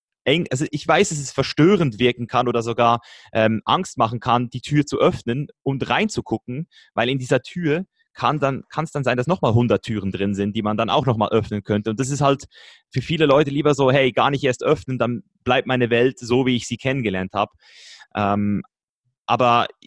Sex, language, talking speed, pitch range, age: male, German, 205 wpm, 115-135 Hz, 30-49